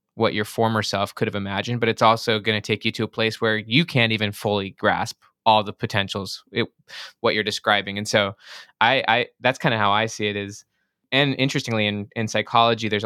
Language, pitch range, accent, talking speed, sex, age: English, 105-115 Hz, American, 220 wpm, male, 20-39